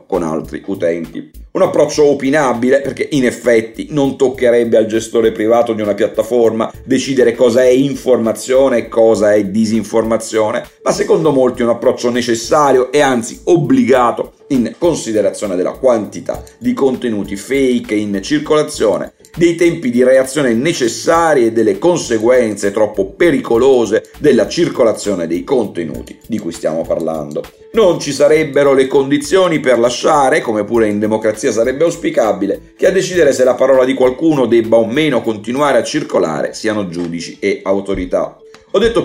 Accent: native